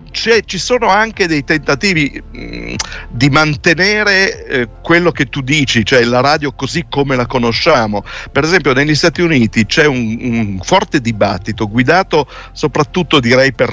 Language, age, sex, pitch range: Italian, 50-69, male, 105-140 Hz